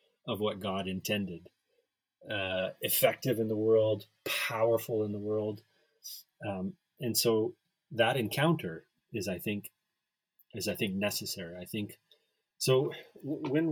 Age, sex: 30-49, male